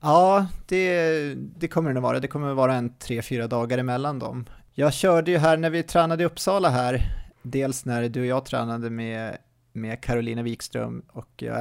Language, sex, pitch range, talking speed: Swedish, male, 120-145 Hz, 205 wpm